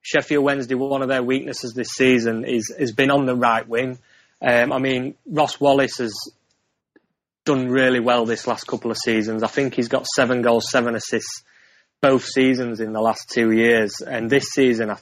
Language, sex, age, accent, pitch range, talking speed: English, male, 20-39, British, 115-130 Hz, 190 wpm